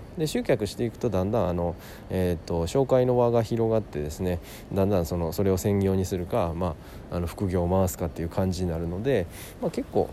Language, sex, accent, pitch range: Japanese, male, native, 85-105 Hz